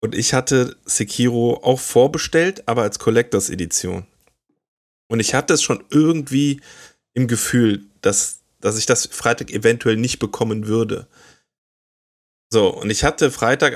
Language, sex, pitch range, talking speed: German, male, 105-120 Hz, 135 wpm